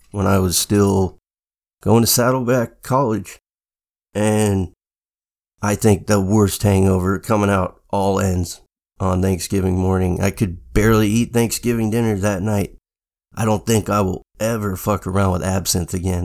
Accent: American